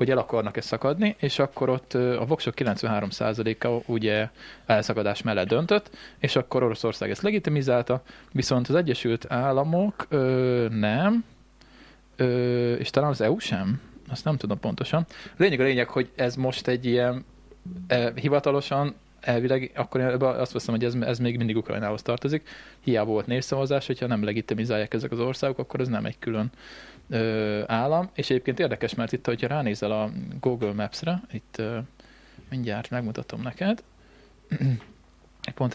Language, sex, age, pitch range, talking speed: Hungarian, male, 20-39, 115-135 Hz, 150 wpm